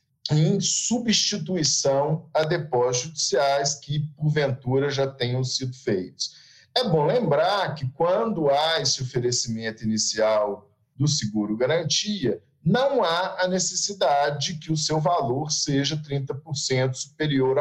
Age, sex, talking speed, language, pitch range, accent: 50-69, male, 115 wpm, Portuguese, 125-155 Hz, Brazilian